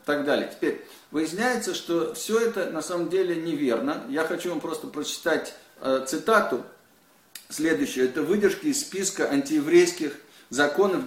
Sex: male